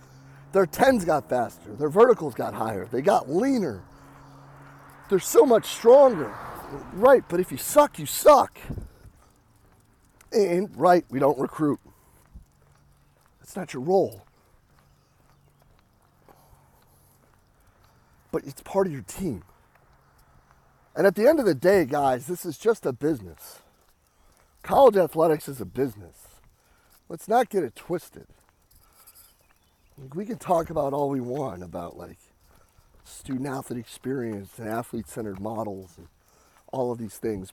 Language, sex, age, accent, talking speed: English, male, 40-59, American, 130 wpm